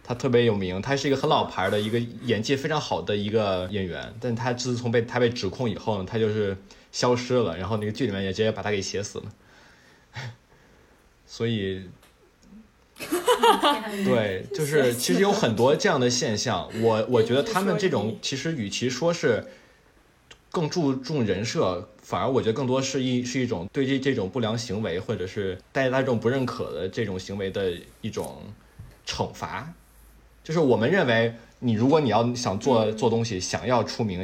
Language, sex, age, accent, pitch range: Chinese, male, 20-39, native, 100-130 Hz